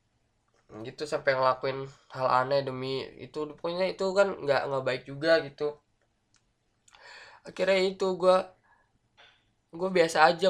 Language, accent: Indonesian, native